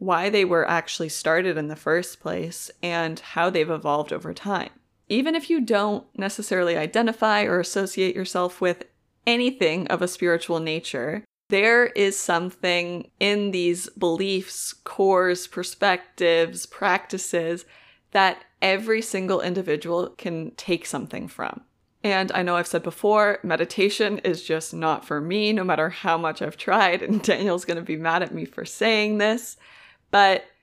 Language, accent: English, American